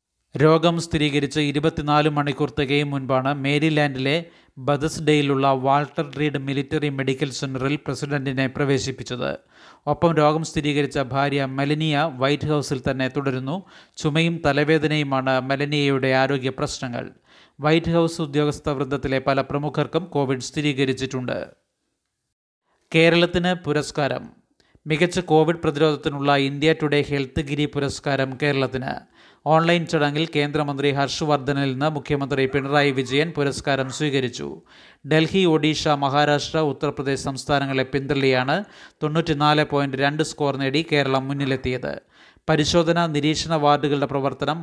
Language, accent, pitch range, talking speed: Malayalam, native, 140-155 Hz, 100 wpm